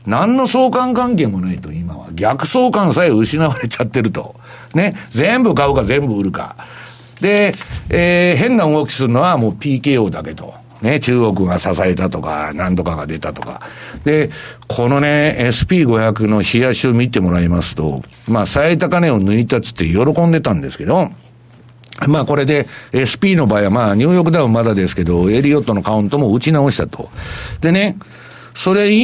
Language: Japanese